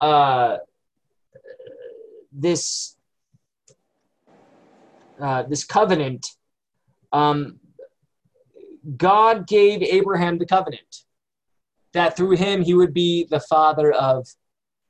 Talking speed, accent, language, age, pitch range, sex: 80 wpm, American, English, 20-39, 130-210 Hz, male